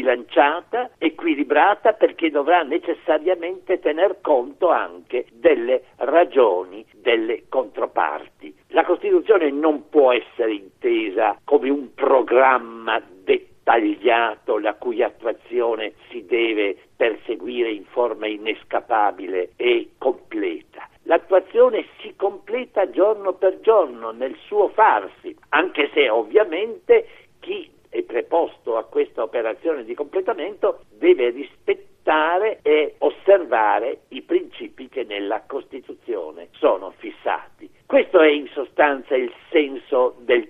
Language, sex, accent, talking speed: Italian, male, native, 100 wpm